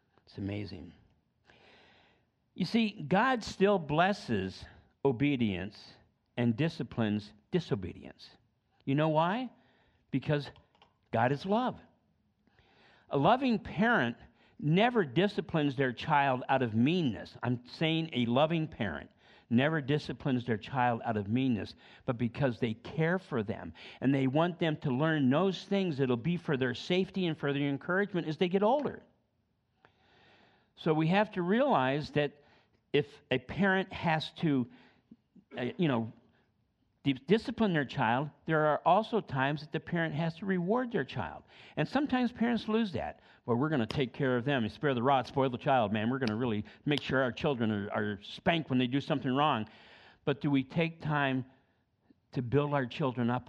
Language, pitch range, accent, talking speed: English, 120-165 Hz, American, 160 wpm